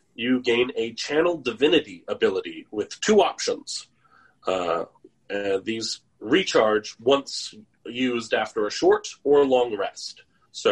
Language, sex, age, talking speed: English, male, 30-49, 125 wpm